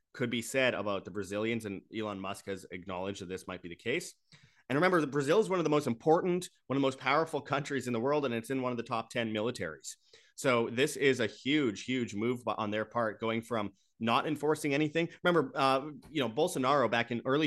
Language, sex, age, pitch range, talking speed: English, male, 30-49, 110-145 Hz, 235 wpm